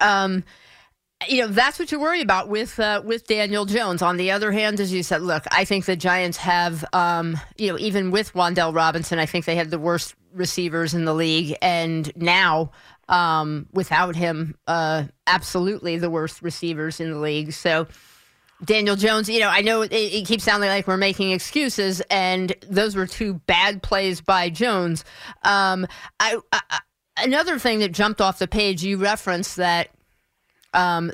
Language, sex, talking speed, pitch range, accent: English, female, 180 wpm, 175-205 Hz, American